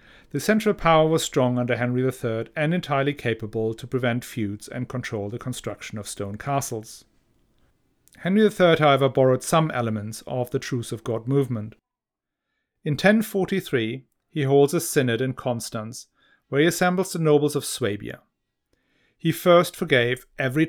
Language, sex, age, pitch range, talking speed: English, male, 40-59, 115-150 Hz, 150 wpm